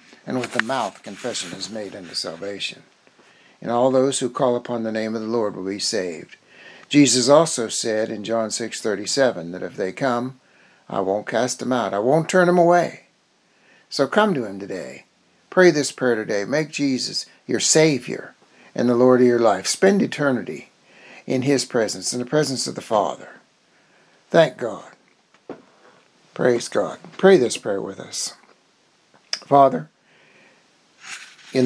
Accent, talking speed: American, 160 wpm